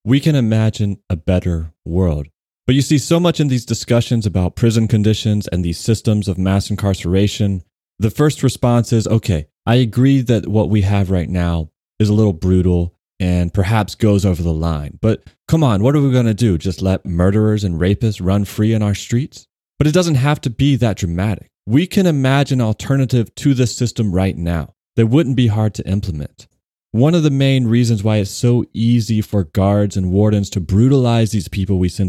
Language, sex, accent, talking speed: English, male, American, 200 wpm